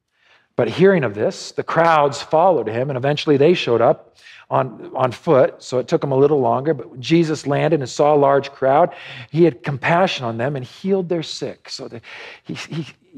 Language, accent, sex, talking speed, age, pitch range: English, American, male, 195 wpm, 50-69, 135-175 Hz